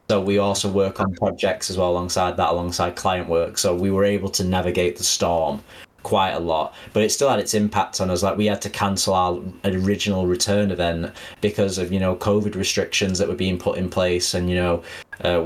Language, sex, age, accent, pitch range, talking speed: English, male, 20-39, British, 90-100 Hz, 220 wpm